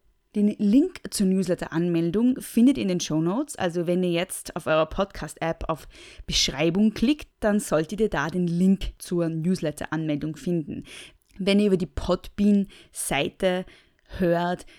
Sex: female